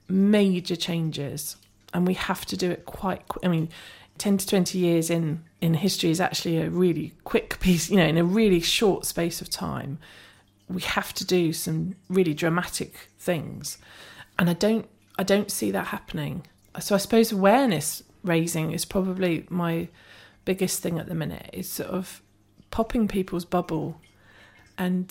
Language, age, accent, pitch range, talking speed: English, 40-59, British, 155-185 Hz, 165 wpm